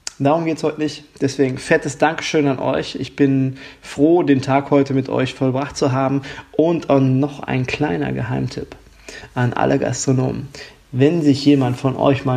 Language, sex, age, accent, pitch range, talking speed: German, male, 20-39, German, 135-150 Hz, 170 wpm